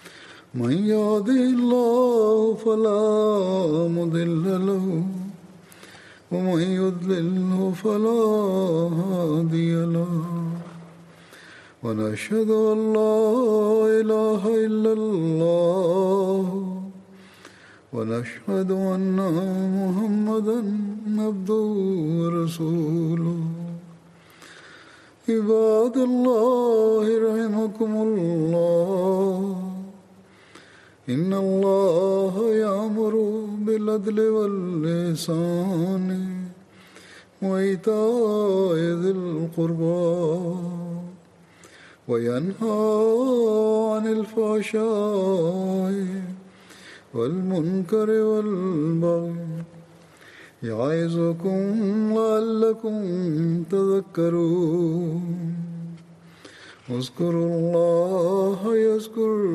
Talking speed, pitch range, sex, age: 35 wpm, 170-215 Hz, male, 60-79